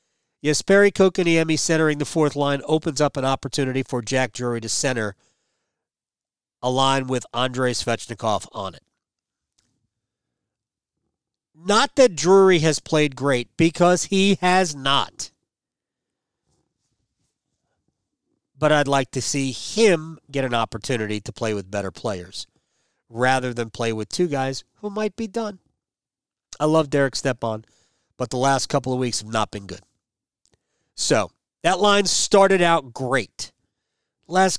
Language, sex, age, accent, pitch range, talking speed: English, male, 40-59, American, 120-165 Hz, 135 wpm